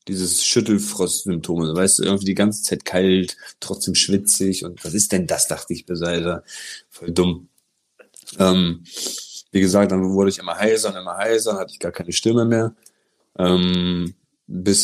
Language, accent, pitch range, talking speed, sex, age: German, German, 95-115 Hz, 165 wpm, male, 30-49